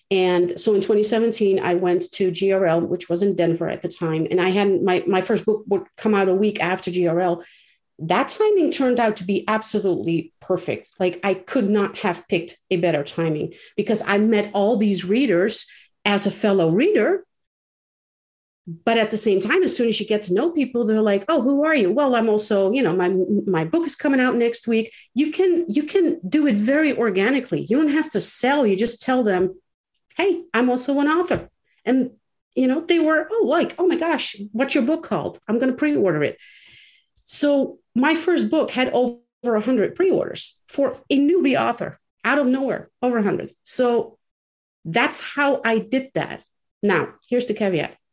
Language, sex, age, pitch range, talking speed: English, female, 50-69, 185-270 Hz, 195 wpm